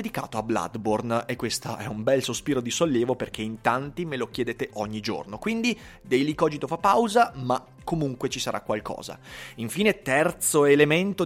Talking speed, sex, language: 170 wpm, male, Italian